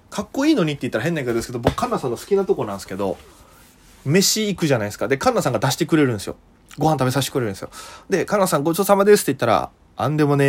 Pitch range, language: 115-170 Hz, Japanese